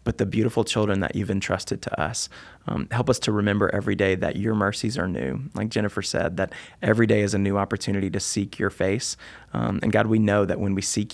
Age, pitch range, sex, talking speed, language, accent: 20-39, 100-115 Hz, male, 235 wpm, English, American